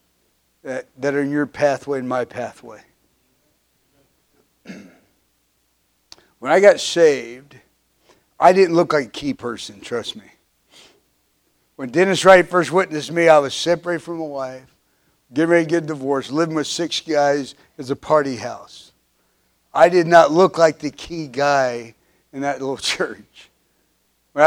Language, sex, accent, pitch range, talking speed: English, male, American, 140-180 Hz, 145 wpm